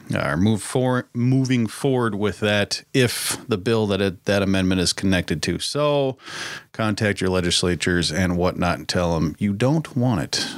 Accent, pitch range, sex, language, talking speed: American, 100-135 Hz, male, English, 155 wpm